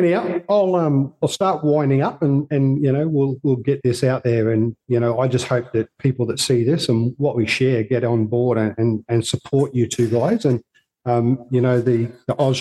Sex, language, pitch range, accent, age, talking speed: male, English, 115-130 Hz, Australian, 50-69, 235 wpm